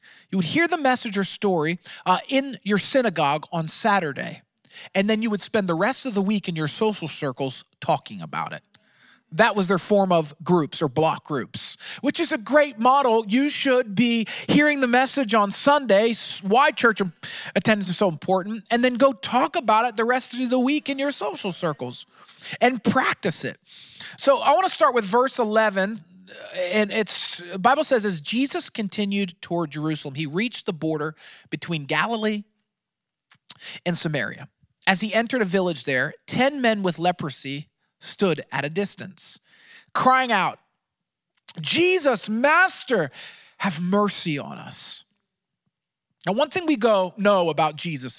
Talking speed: 165 wpm